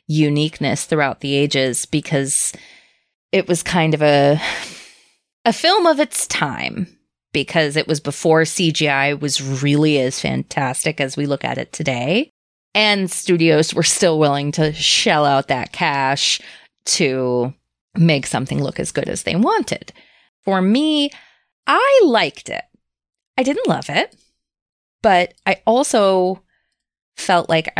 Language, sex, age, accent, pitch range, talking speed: English, female, 20-39, American, 145-180 Hz, 135 wpm